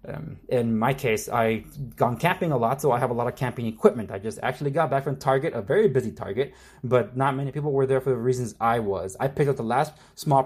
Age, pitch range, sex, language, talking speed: 20-39, 110-135 Hz, male, English, 260 wpm